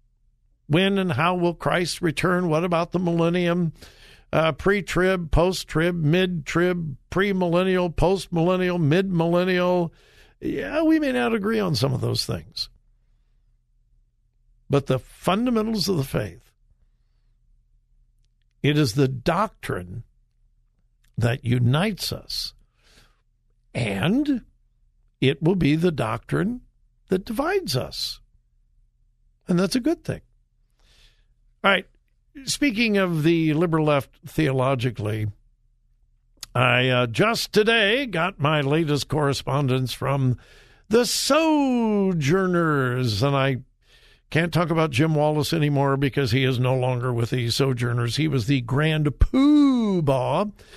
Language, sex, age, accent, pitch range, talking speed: English, male, 60-79, American, 125-180 Hz, 110 wpm